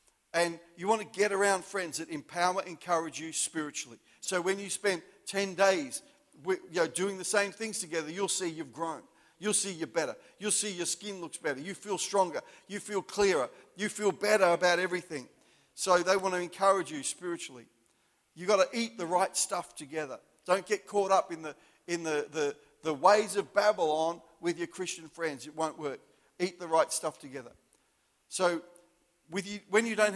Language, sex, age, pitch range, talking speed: English, male, 50-69, 160-195 Hz, 185 wpm